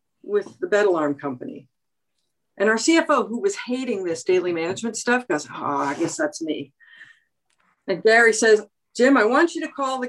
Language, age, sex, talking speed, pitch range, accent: English, 50-69, female, 185 wpm, 205-265 Hz, American